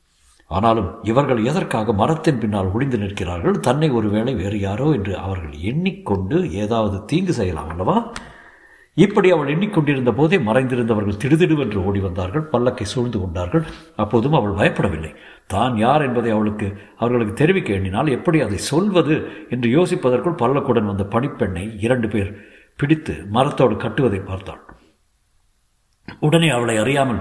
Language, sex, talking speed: Tamil, male, 115 wpm